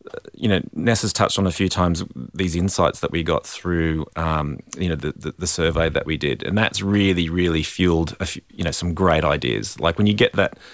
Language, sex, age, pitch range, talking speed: English, male, 30-49, 80-95 Hz, 235 wpm